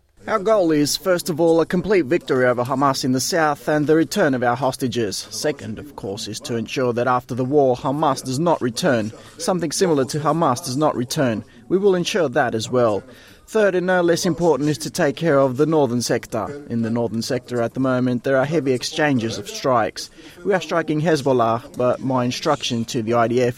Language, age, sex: Filipino, 20-39, male